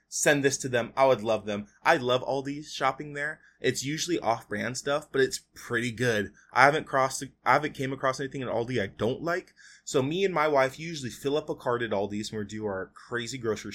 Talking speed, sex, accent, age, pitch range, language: 225 wpm, male, American, 20-39, 110-140 Hz, English